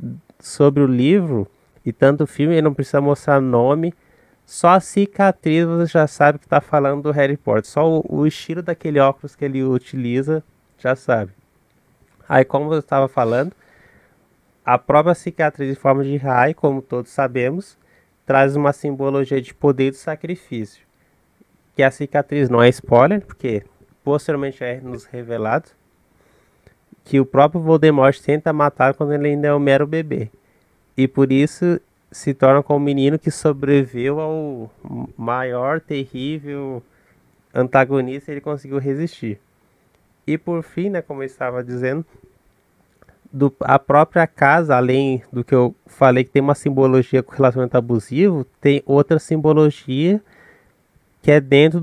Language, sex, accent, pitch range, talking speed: Portuguese, male, Brazilian, 130-155 Hz, 150 wpm